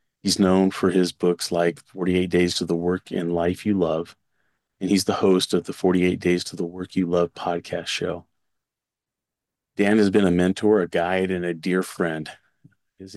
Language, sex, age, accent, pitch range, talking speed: English, male, 30-49, American, 85-95 Hz, 190 wpm